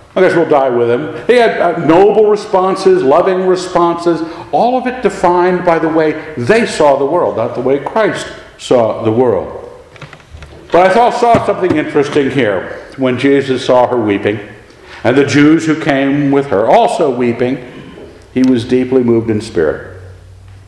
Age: 60-79